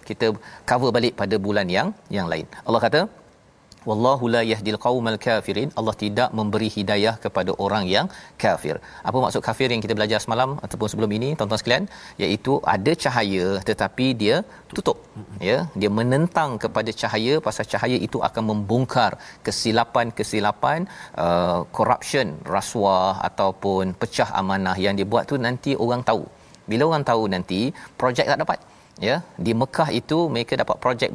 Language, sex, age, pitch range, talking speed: Malayalam, male, 40-59, 105-125 Hz, 150 wpm